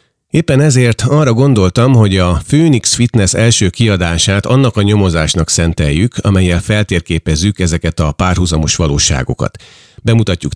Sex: male